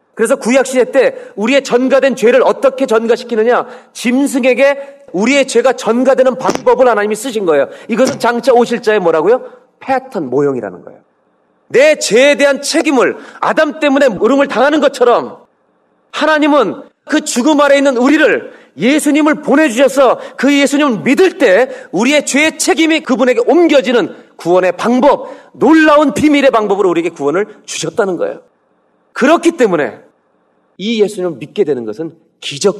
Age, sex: 40-59, male